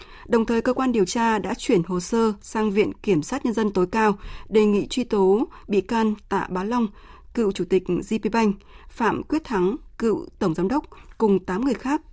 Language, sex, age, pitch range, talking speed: Vietnamese, female, 20-39, 185-230 Hz, 210 wpm